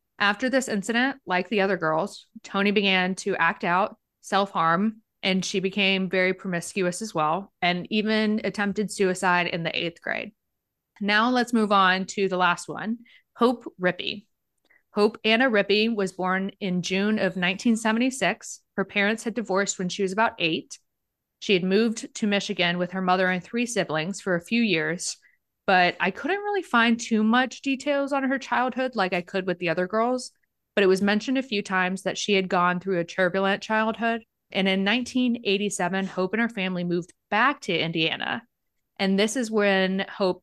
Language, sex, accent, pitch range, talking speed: English, female, American, 180-225 Hz, 180 wpm